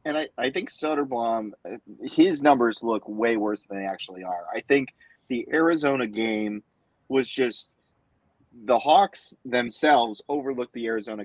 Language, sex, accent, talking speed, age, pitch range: English, male, American, 145 wpm, 30-49, 105-140 Hz